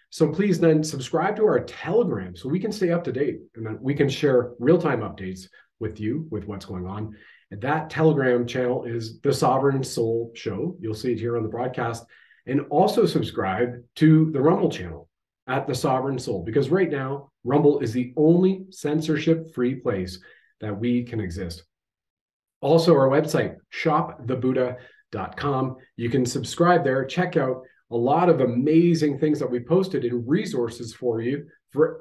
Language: English